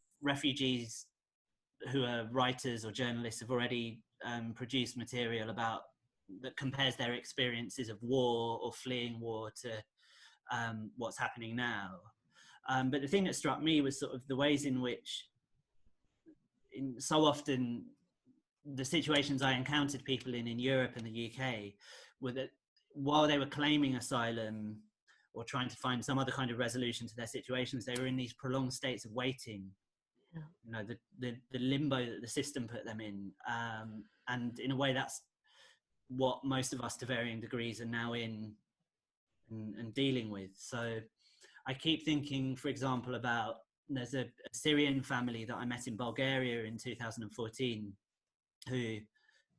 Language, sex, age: English, male, 30-49